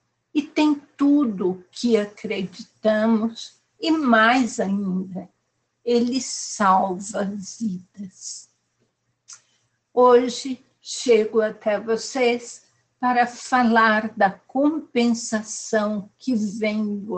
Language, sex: Portuguese, female